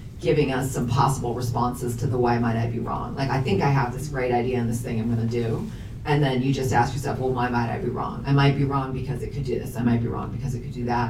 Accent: American